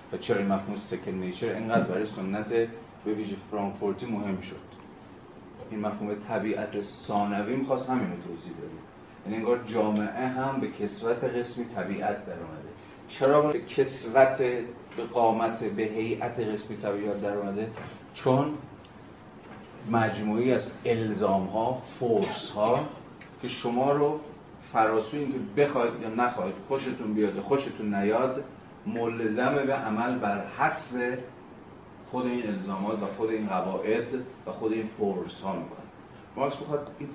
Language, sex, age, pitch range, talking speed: Persian, male, 30-49, 105-130 Hz, 125 wpm